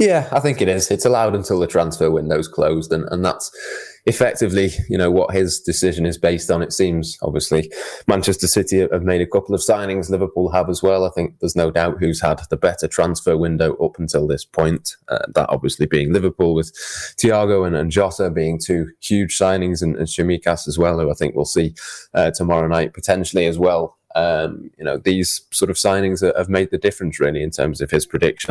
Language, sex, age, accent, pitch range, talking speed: English, male, 20-39, British, 80-95 Hz, 215 wpm